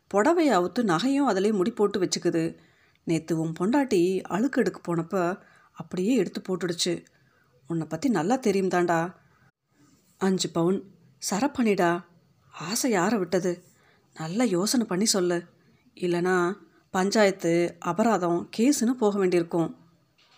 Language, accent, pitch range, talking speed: Tamil, native, 170-215 Hz, 105 wpm